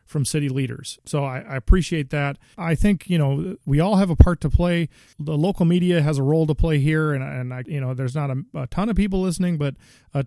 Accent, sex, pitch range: American, male, 135-160 Hz